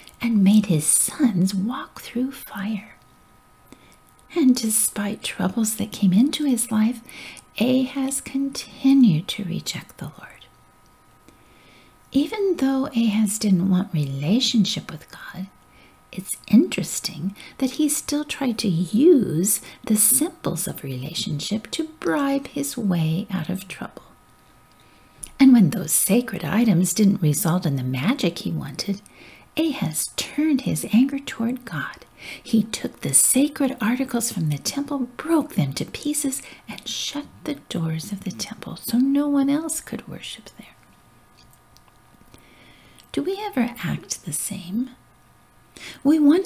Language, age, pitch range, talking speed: English, 50-69, 185-270 Hz, 130 wpm